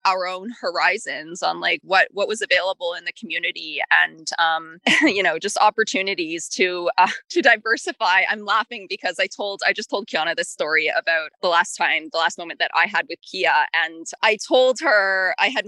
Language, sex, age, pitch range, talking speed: English, female, 20-39, 185-270 Hz, 195 wpm